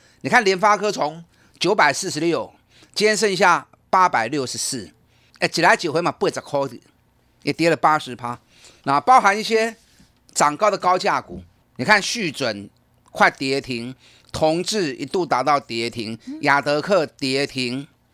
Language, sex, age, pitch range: Chinese, male, 30-49, 125-200 Hz